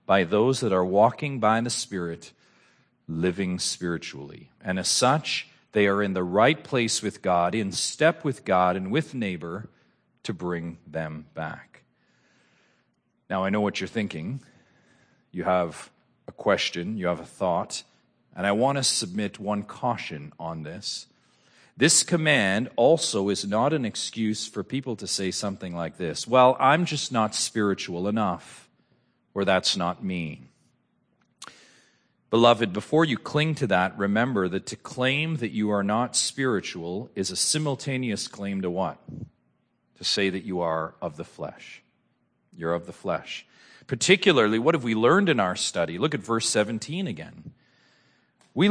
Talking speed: 155 wpm